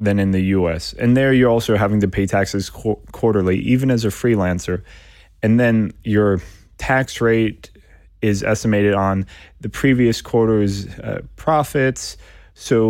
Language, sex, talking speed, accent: Finnish, male, 150 wpm, American